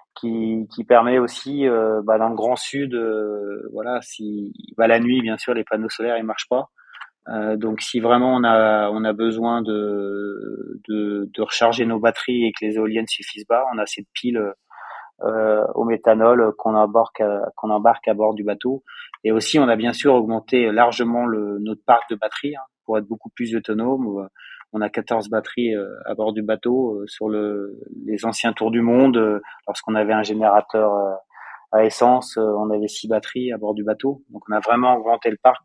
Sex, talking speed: male, 195 wpm